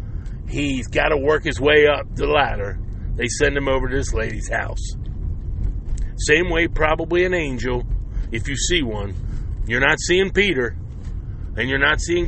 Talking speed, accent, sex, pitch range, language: 165 wpm, American, male, 90-140 Hz, English